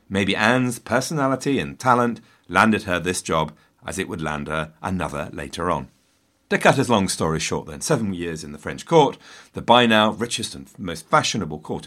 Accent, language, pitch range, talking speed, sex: British, English, 80-125 Hz, 190 wpm, male